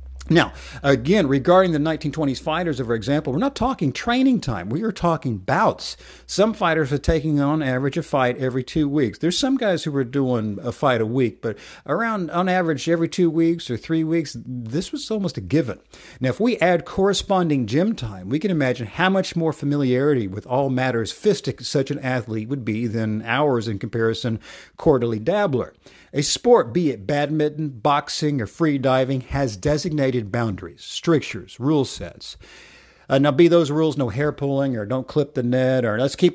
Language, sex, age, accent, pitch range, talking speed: English, male, 50-69, American, 125-165 Hz, 185 wpm